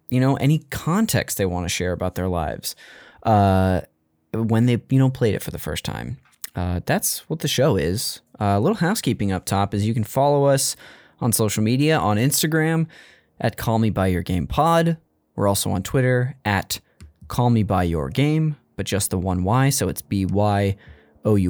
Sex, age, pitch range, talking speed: male, 20-39, 100-140 Hz, 200 wpm